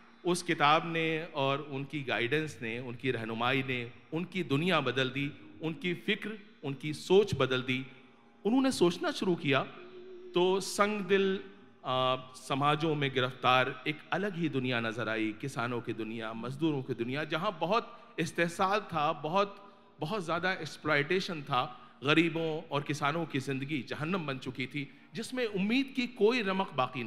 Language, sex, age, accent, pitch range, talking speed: Hindi, male, 40-59, native, 125-180 Hz, 145 wpm